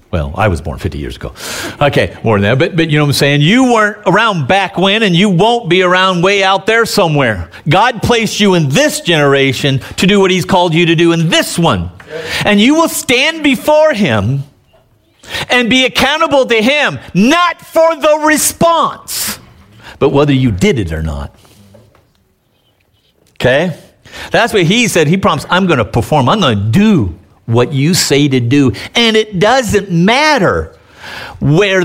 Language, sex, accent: English, male, American